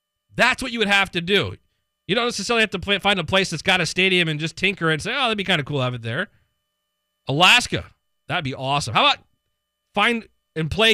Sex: male